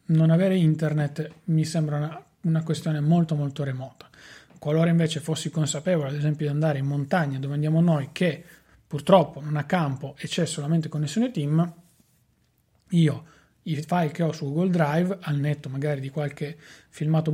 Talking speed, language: 165 wpm, Italian